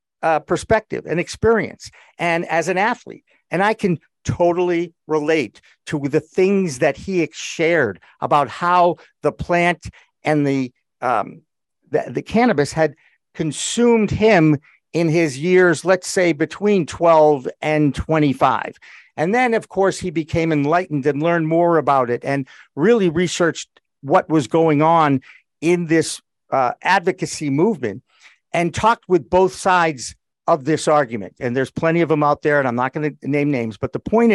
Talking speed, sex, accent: 155 wpm, male, American